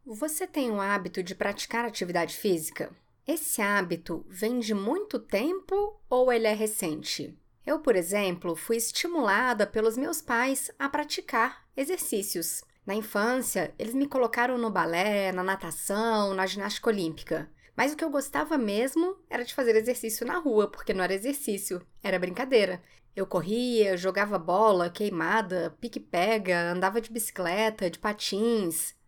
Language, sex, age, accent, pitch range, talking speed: Portuguese, female, 10-29, Brazilian, 200-245 Hz, 145 wpm